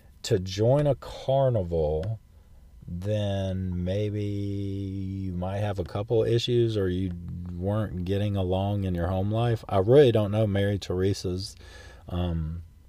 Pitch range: 90-120 Hz